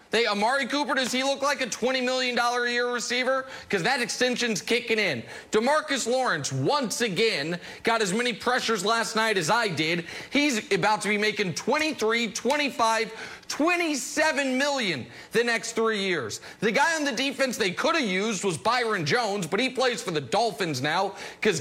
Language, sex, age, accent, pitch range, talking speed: English, male, 30-49, American, 210-265 Hz, 180 wpm